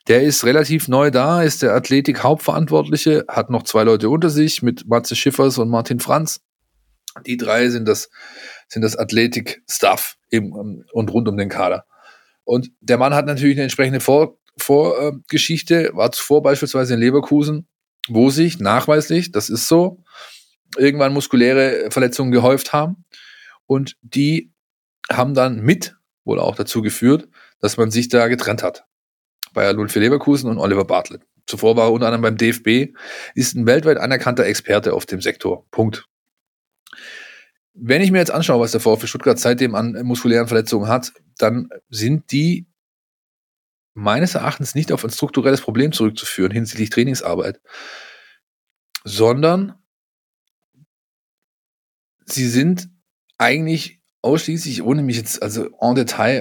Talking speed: 140 wpm